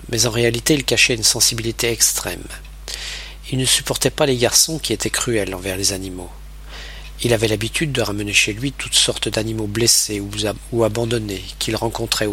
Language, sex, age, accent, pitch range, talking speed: French, male, 40-59, French, 100-125 Hz, 170 wpm